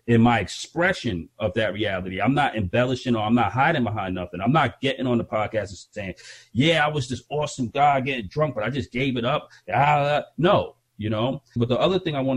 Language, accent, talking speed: English, American, 230 wpm